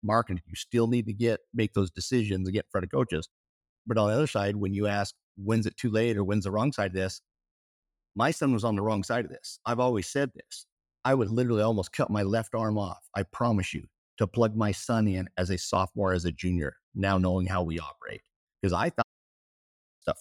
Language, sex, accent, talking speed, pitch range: English, male, American, 235 wpm, 95-115 Hz